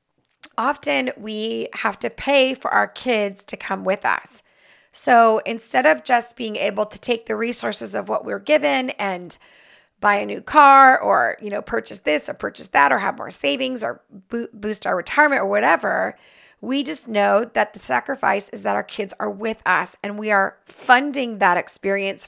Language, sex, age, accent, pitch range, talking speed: English, female, 30-49, American, 195-240 Hz, 185 wpm